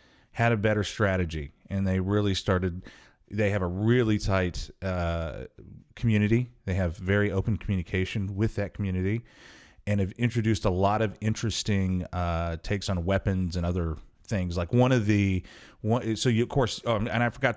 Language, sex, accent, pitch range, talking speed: English, male, American, 90-110 Hz, 170 wpm